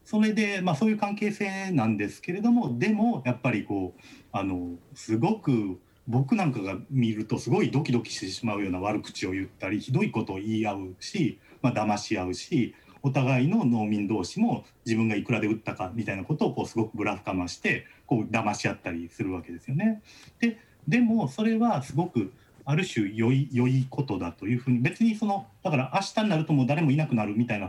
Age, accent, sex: 40-59, native, male